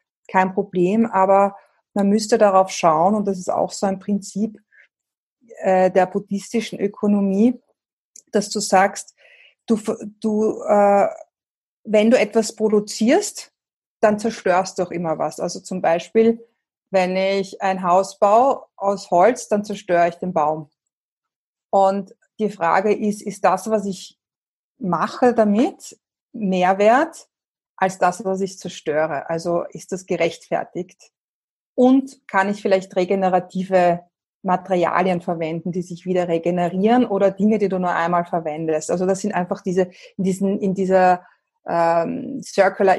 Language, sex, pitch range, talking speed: German, female, 180-210 Hz, 135 wpm